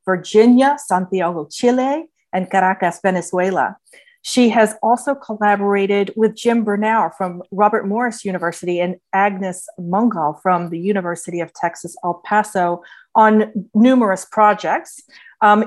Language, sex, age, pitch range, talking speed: English, female, 40-59, 185-235 Hz, 120 wpm